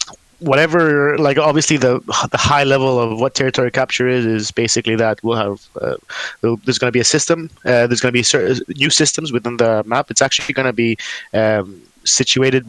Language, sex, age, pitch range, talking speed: English, male, 20-39, 115-135 Hz, 200 wpm